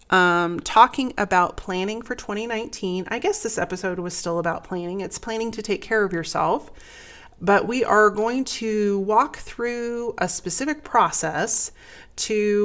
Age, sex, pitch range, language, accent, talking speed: 30-49, female, 180-220 Hz, English, American, 150 wpm